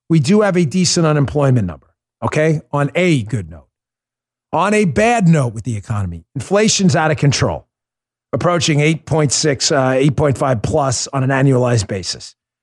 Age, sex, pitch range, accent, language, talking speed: 50-69, male, 125-185 Hz, American, English, 150 wpm